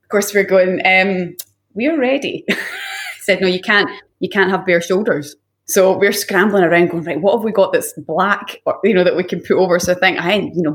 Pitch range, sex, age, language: 175-240 Hz, female, 20-39, English